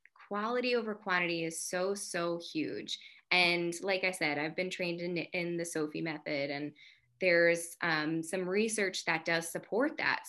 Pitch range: 165-205 Hz